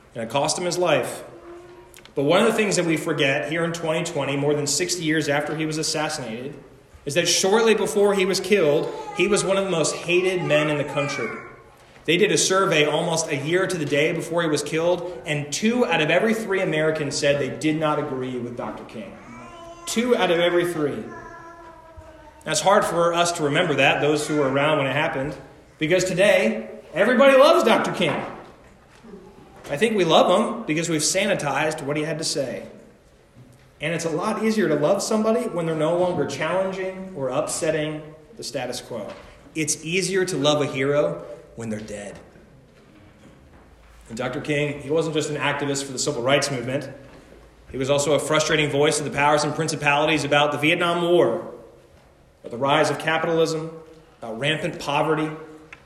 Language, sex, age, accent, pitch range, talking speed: English, male, 30-49, American, 145-175 Hz, 185 wpm